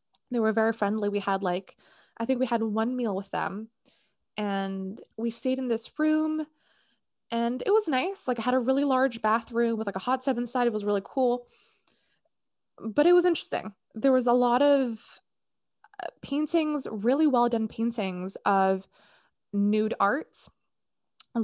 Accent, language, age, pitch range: American, English, 20-39, 200-250 Hz